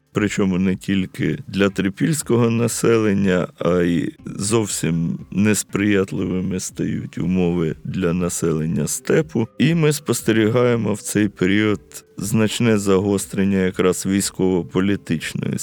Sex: male